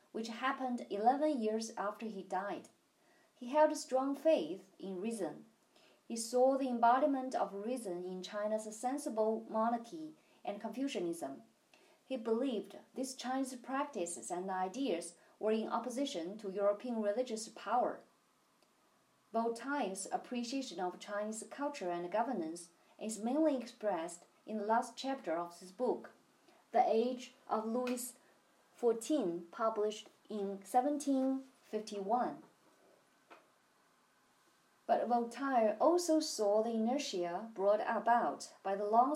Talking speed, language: 120 wpm, English